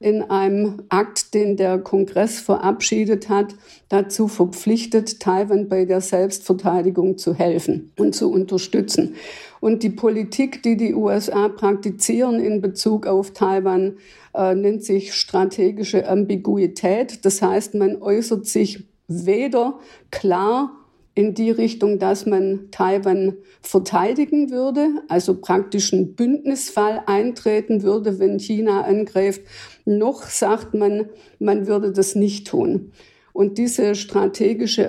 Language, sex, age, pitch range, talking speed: German, female, 50-69, 190-215 Hz, 120 wpm